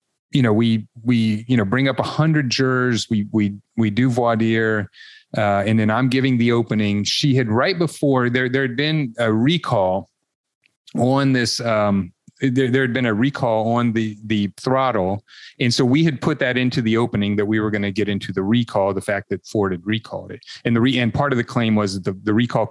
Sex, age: male, 30-49